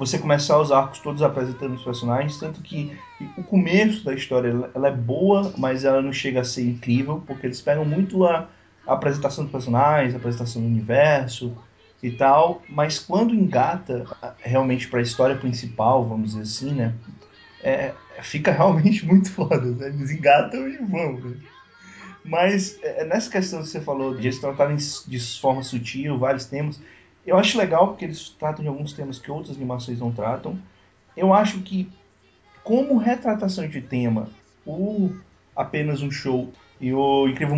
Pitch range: 125-175 Hz